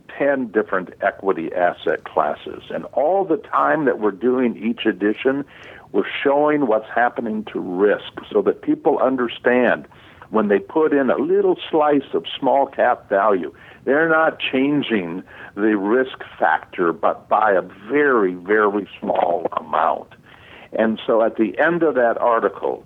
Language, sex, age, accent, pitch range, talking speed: English, male, 60-79, American, 110-145 Hz, 145 wpm